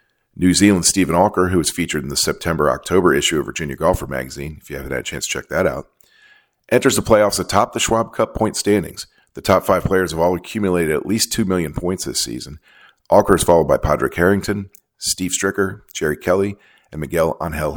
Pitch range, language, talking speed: 85-115 Hz, English, 205 wpm